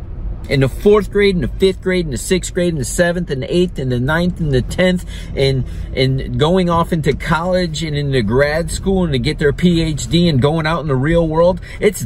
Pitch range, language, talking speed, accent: 115-180 Hz, English, 235 wpm, American